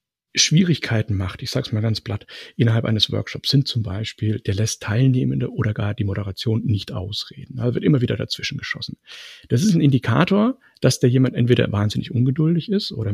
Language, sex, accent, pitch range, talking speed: German, male, German, 110-145 Hz, 185 wpm